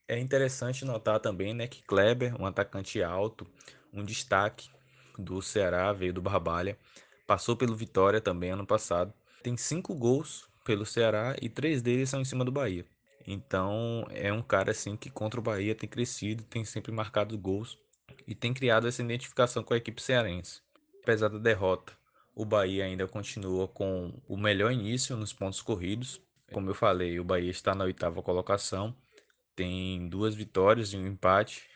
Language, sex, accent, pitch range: Portuguese, male, Brazilian, 95-120 Hz